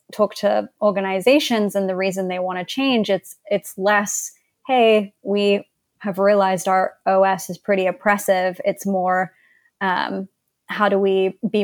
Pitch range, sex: 185-205 Hz, female